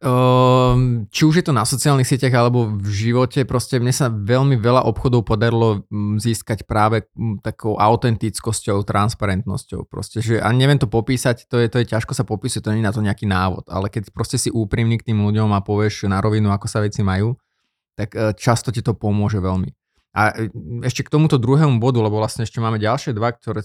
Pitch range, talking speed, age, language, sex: 110-130 Hz, 195 wpm, 20-39, Slovak, male